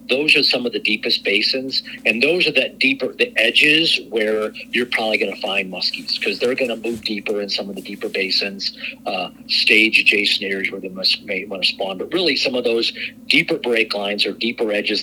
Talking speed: 220 wpm